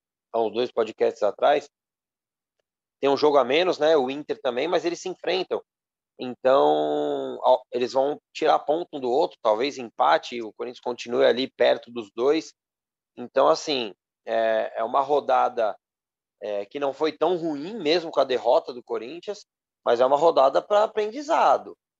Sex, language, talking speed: male, Portuguese, 160 wpm